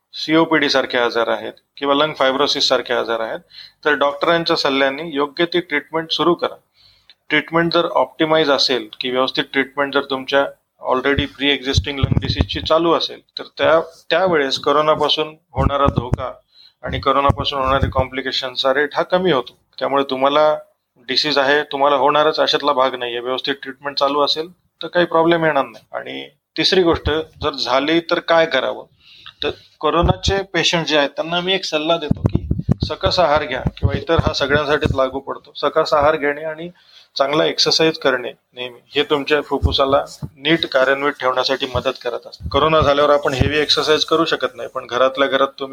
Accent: native